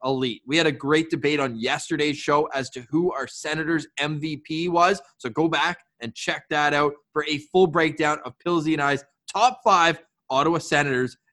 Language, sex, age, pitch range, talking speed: English, male, 20-39, 135-165 Hz, 185 wpm